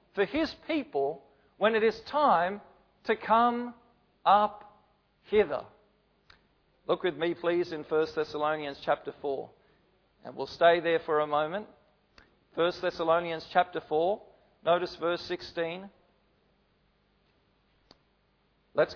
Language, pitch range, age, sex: English, 185-235 Hz, 40-59, male